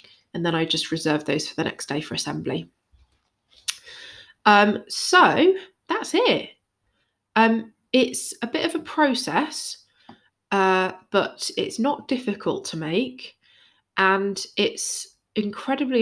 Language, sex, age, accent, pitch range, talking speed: English, female, 20-39, British, 175-235 Hz, 125 wpm